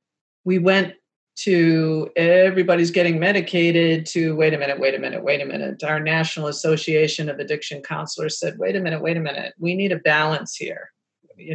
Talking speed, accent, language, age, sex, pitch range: 180 wpm, American, English, 50-69, female, 160-200 Hz